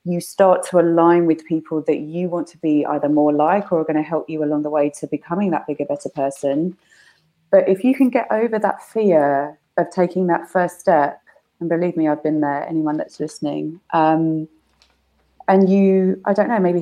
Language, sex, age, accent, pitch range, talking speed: English, female, 30-49, British, 155-180 Hz, 205 wpm